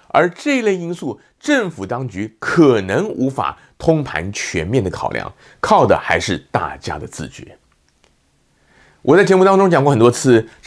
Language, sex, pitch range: Chinese, male, 100-165 Hz